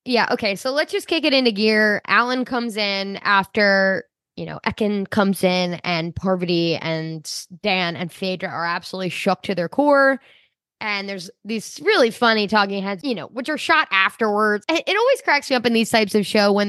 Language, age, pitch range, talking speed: English, 10-29, 195-270 Hz, 195 wpm